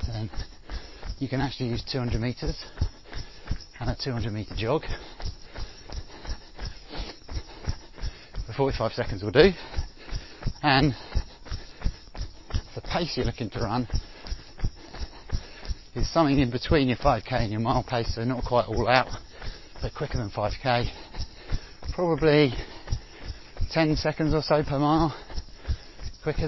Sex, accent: male, British